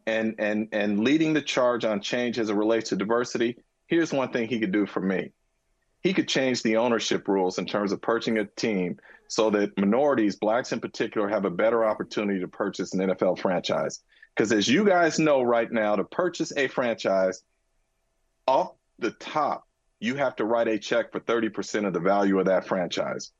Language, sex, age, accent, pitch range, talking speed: English, male, 40-59, American, 105-155 Hz, 195 wpm